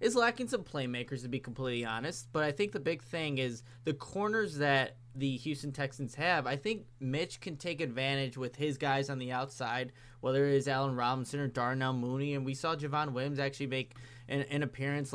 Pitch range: 125-150 Hz